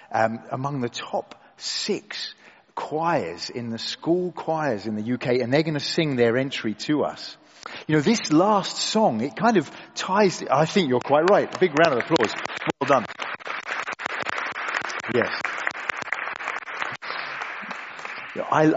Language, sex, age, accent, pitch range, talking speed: English, male, 40-59, British, 130-175 Hz, 140 wpm